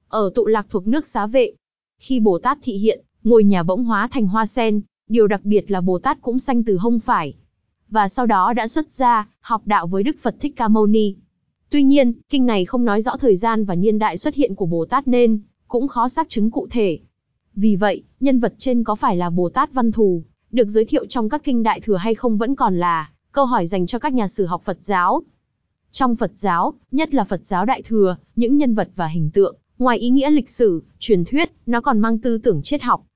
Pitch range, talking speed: 200-255 Hz, 235 wpm